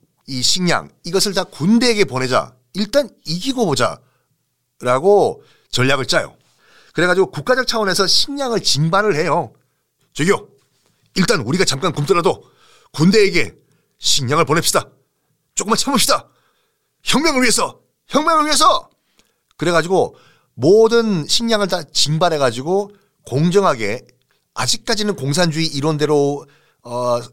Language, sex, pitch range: Korean, male, 135-195 Hz